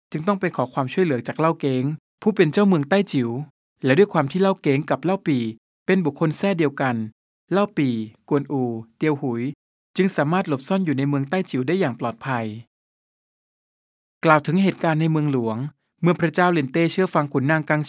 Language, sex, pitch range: Thai, male, 130-175 Hz